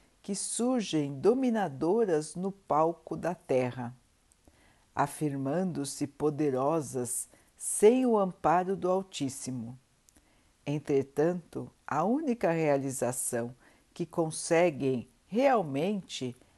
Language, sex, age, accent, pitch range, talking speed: Portuguese, female, 60-79, Brazilian, 140-195 Hz, 75 wpm